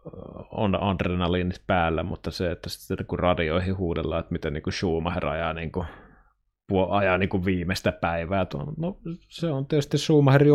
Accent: native